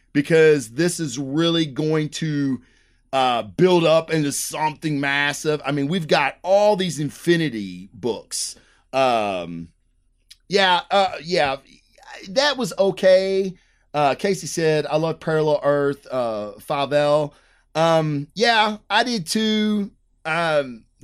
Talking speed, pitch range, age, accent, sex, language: 120 wpm, 140-170 Hz, 30-49, American, male, English